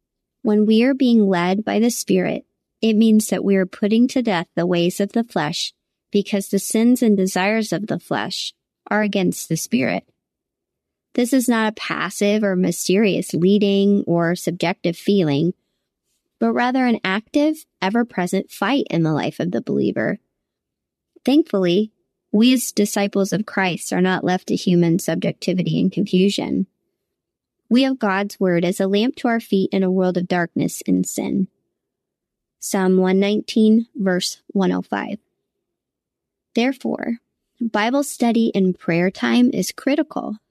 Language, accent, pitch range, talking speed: English, American, 180-225 Hz, 145 wpm